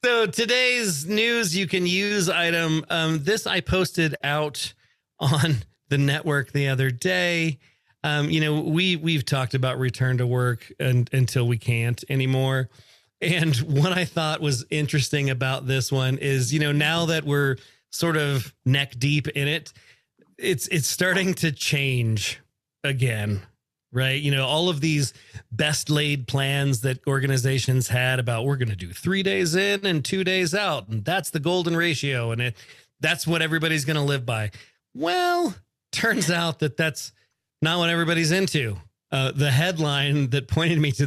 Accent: American